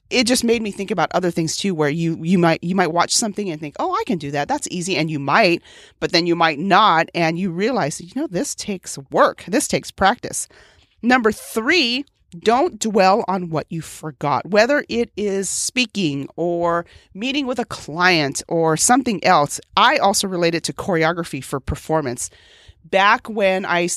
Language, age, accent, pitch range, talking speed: English, 40-59, American, 150-195 Hz, 190 wpm